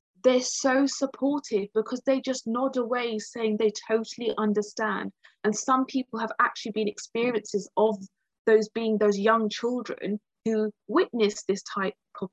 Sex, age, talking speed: female, 30-49, 145 wpm